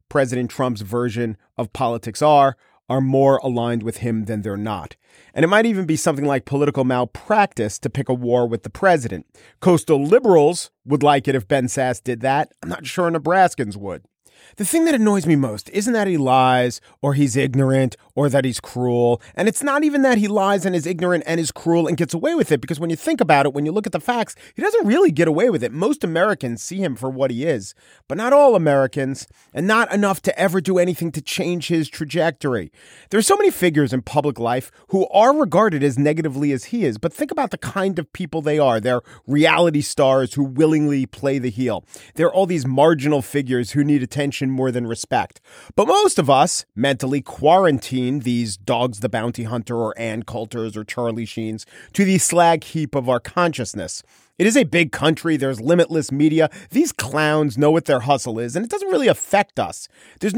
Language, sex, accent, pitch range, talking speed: English, male, American, 125-170 Hz, 210 wpm